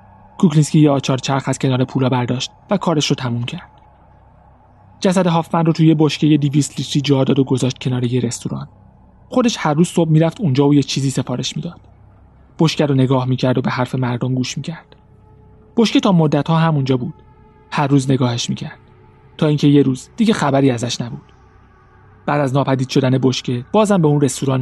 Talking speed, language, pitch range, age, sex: 190 wpm, Persian, 125-165 Hz, 30-49, male